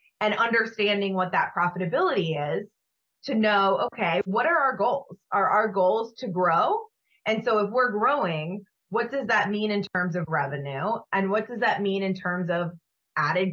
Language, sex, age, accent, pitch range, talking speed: English, female, 20-39, American, 180-225 Hz, 180 wpm